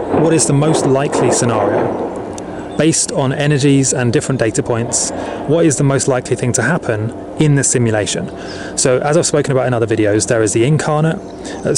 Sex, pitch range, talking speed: male, 110-140 Hz, 190 wpm